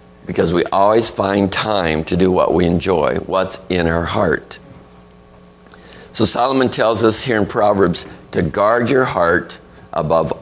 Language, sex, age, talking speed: English, male, 50-69, 150 wpm